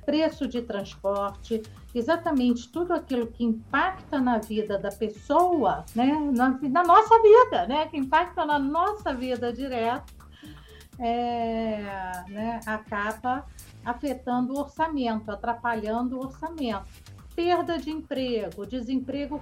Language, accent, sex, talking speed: Portuguese, Brazilian, female, 110 wpm